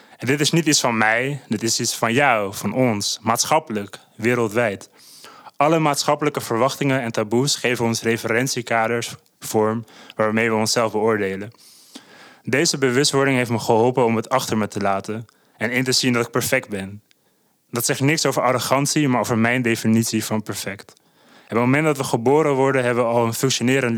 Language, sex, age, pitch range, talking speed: Dutch, male, 20-39, 115-135 Hz, 180 wpm